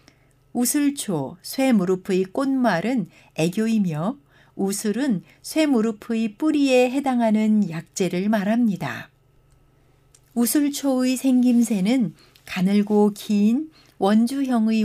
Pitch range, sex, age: 180-245 Hz, female, 60-79